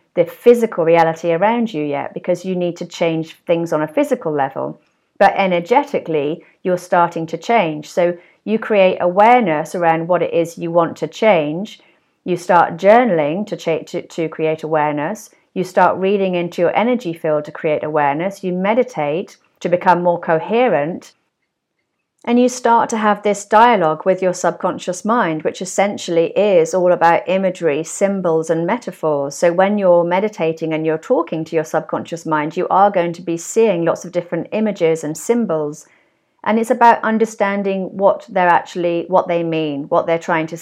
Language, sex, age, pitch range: English, female, 40-59, 165-205 Hz